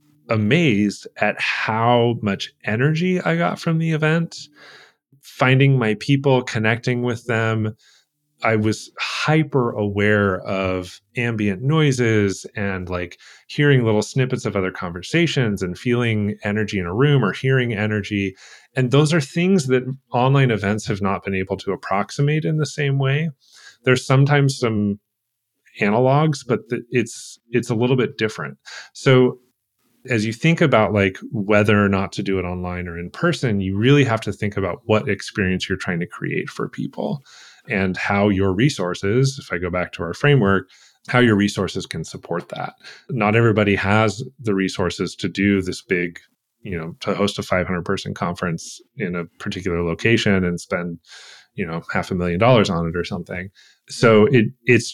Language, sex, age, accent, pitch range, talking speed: English, male, 30-49, American, 100-130 Hz, 165 wpm